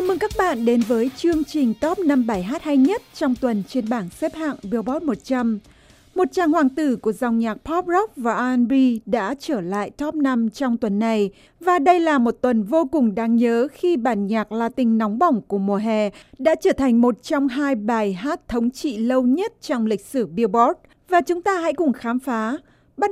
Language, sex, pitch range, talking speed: Vietnamese, female, 230-295 Hz, 215 wpm